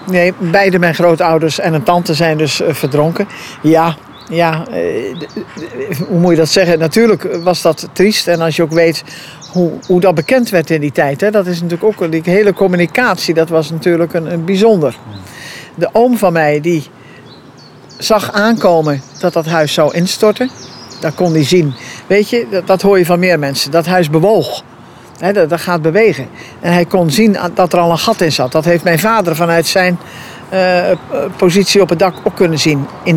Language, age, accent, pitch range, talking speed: Dutch, 60-79, Dutch, 160-195 Hz, 190 wpm